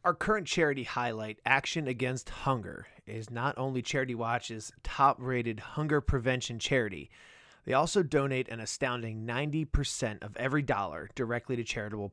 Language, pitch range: English, 120-145 Hz